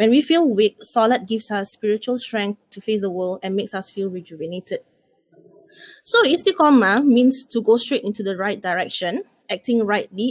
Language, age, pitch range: English, 20-39, 200-245 Hz